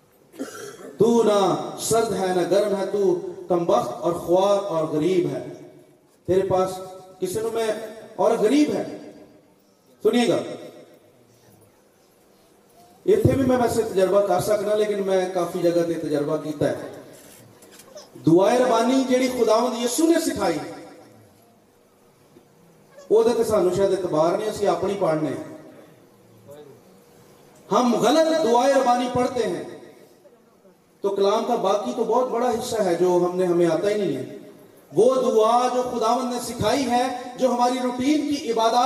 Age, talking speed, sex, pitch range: 40-59, 110 wpm, male, 195-255 Hz